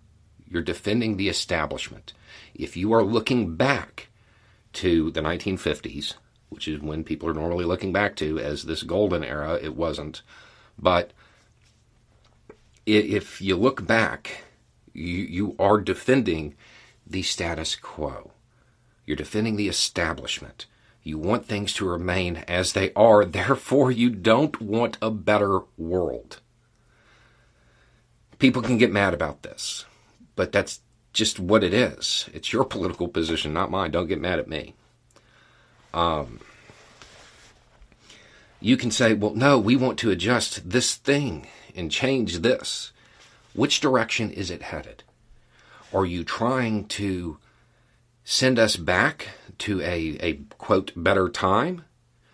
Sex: male